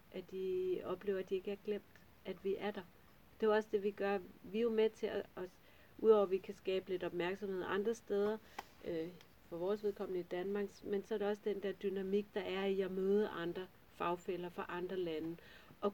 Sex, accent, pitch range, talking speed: female, native, 175-205 Hz, 220 wpm